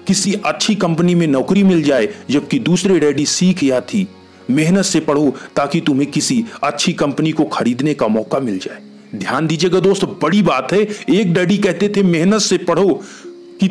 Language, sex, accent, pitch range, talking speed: Hindi, male, native, 150-200 Hz, 180 wpm